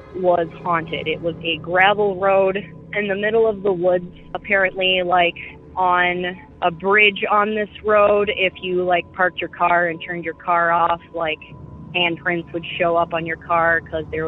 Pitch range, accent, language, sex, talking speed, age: 165-185 Hz, American, English, female, 175 wpm, 20-39